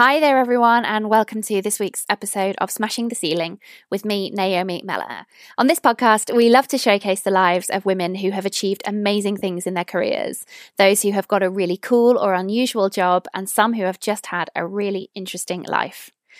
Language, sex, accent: English, female, British